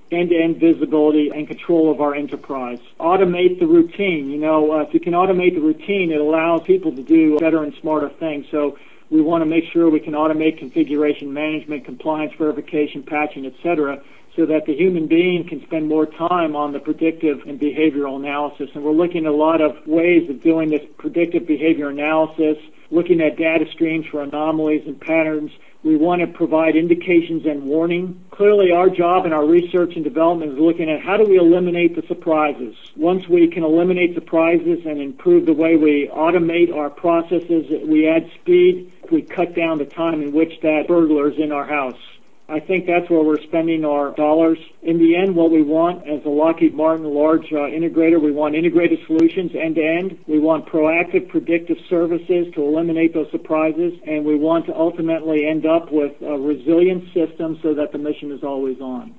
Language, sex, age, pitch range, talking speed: English, male, 50-69, 150-170 Hz, 190 wpm